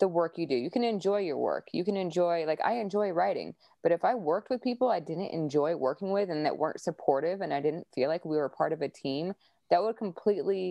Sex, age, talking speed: female, 20-39, 250 wpm